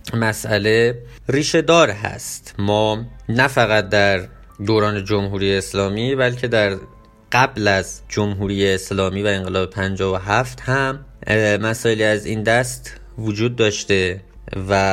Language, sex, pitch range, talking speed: Persian, male, 100-120 Hz, 120 wpm